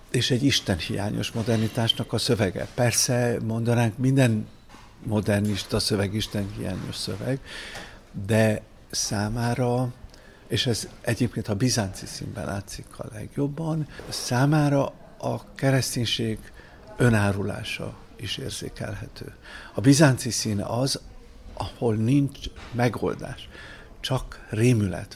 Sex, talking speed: male, 95 wpm